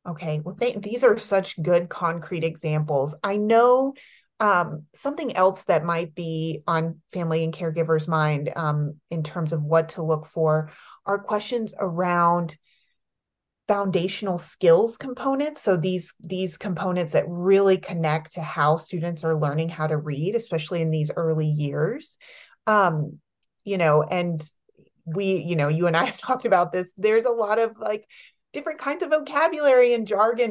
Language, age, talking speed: English, 30-49, 155 wpm